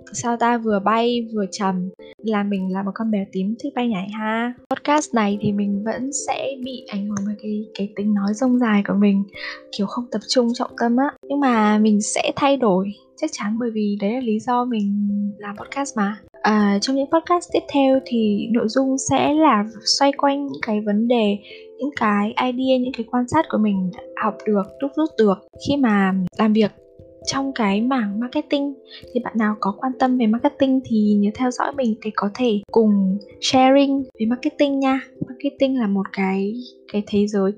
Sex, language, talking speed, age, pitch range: female, Vietnamese, 205 wpm, 10-29, 205-265 Hz